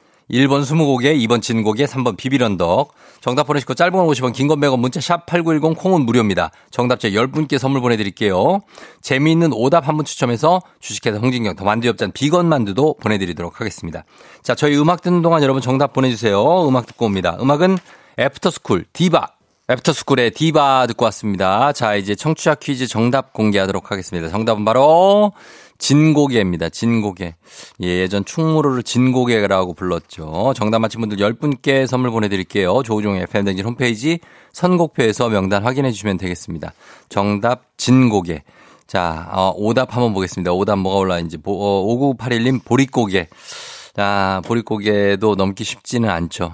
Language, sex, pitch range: Korean, male, 100-140 Hz